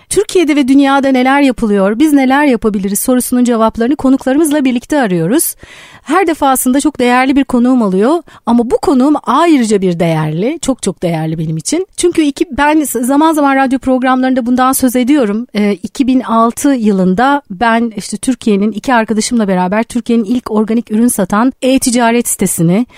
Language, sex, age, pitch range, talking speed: Turkish, female, 40-59, 215-275 Hz, 145 wpm